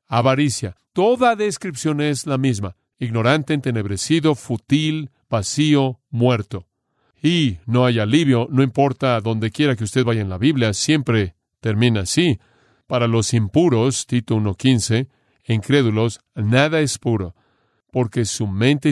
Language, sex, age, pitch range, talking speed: Spanish, male, 40-59, 110-145 Hz, 125 wpm